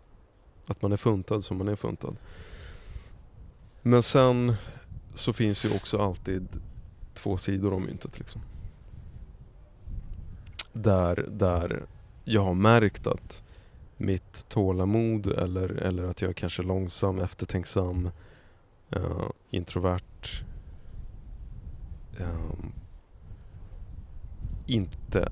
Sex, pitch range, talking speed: male, 90-105 Hz, 85 wpm